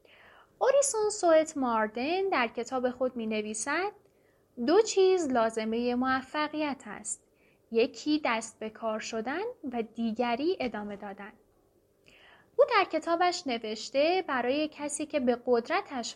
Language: Persian